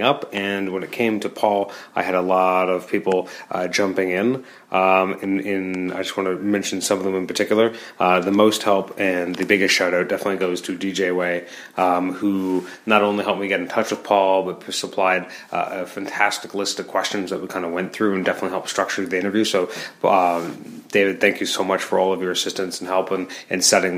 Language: English